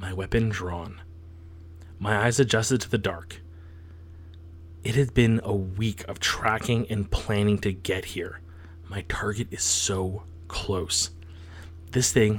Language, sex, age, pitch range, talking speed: English, male, 30-49, 85-110 Hz, 135 wpm